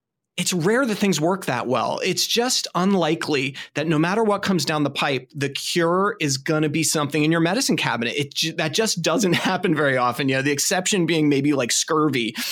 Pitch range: 135-175 Hz